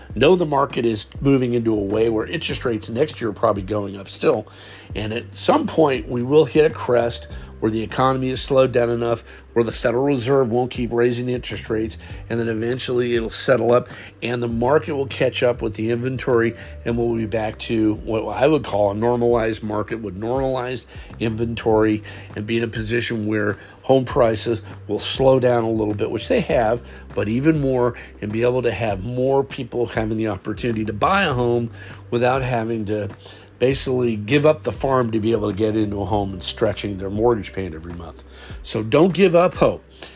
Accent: American